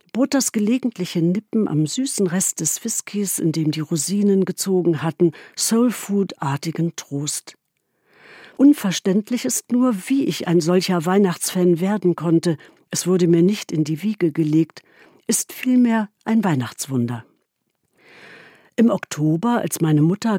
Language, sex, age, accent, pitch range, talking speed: German, female, 60-79, German, 160-215 Hz, 130 wpm